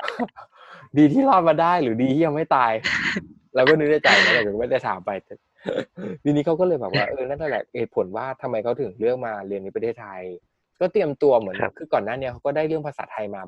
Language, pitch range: Thai, 110-160 Hz